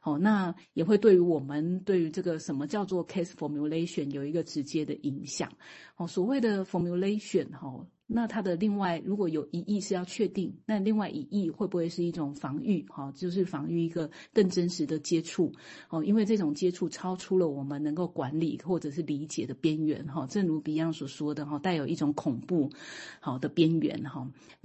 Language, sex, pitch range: Chinese, female, 150-190 Hz